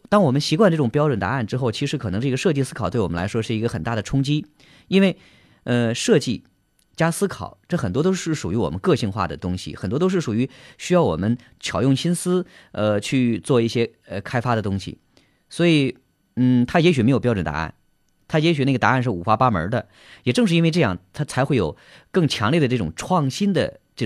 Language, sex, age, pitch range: Chinese, male, 30-49, 110-155 Hz